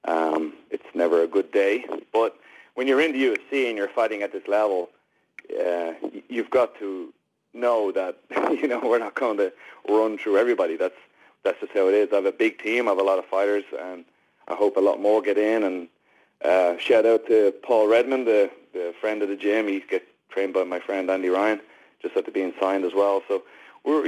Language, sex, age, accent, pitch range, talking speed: English, male, 30-49, Canadian, 95-140 Hz, 215 wpm